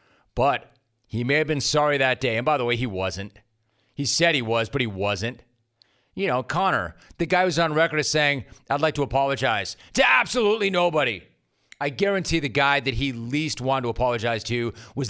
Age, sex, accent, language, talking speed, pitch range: 30-49, male, American, English, 200 wpm, 115-150 Hz